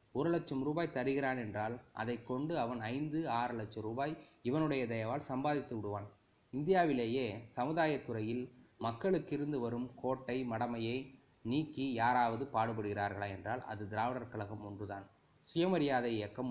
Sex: male